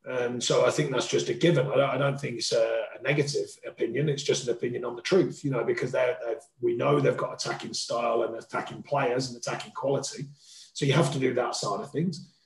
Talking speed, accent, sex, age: 240 wpm, British, male, 30-49